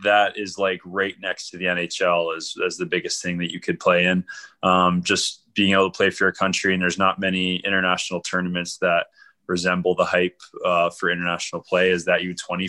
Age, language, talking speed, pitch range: 20-39, English, 215 wpm, 90-95 Hz